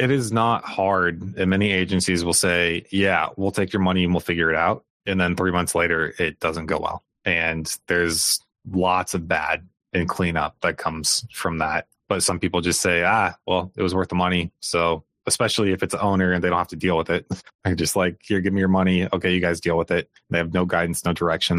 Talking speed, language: 235 wpm, English